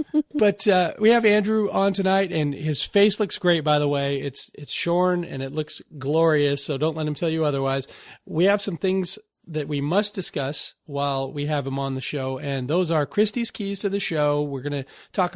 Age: 40-59